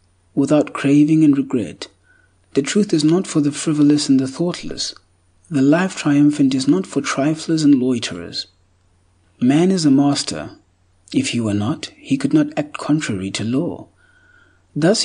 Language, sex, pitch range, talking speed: English, male, 120-165 Hz, 155 wpm